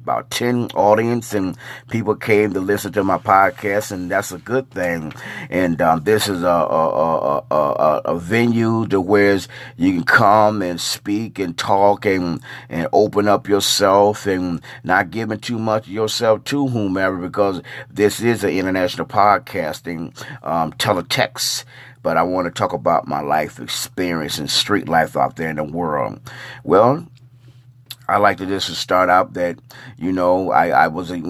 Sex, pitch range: male, 90-105 Hz